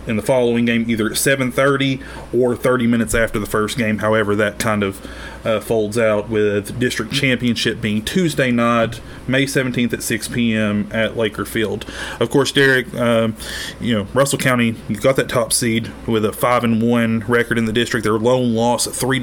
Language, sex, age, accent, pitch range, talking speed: English, male, 30-49, American, 110-130 Hz, 195 wpm